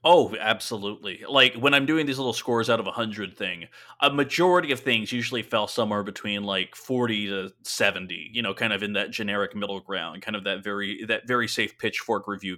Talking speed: 205 wpm